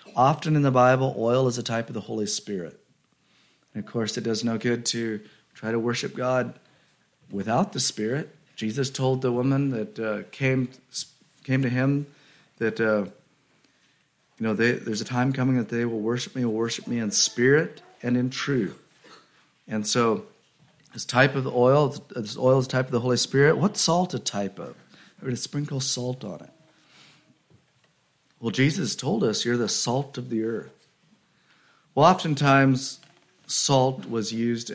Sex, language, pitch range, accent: male, English, 110-135 Hz, American